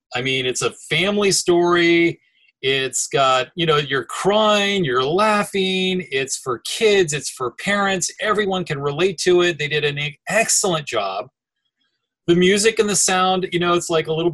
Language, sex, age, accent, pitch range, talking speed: English, male, 30-49, American, 155-195 Hz, 170 wpm